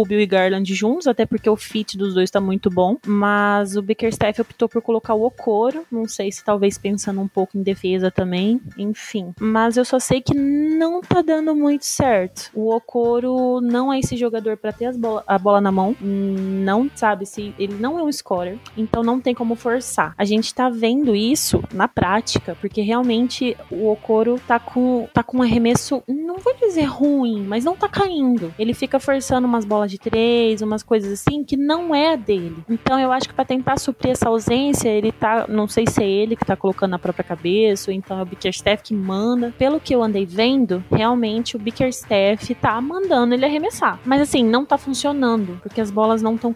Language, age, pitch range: Portuguese, 20-39, 200-245 Hz